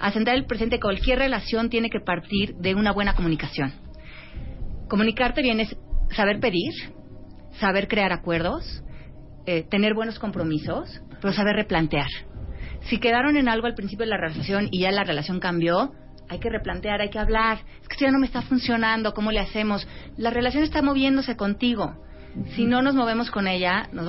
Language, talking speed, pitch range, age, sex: Spanish, 170 wpm, 175-235 Hz, 30-49, female